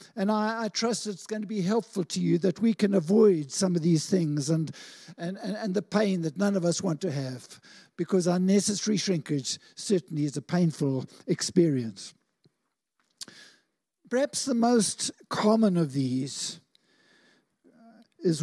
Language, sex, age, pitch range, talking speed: English, male, 60-79, 175-225 Hz, 155 wpm